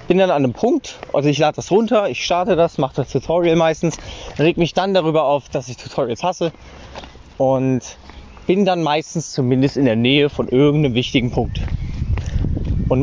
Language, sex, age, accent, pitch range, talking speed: German, male, 20-39, German, 130-175 Hz, 180 wpm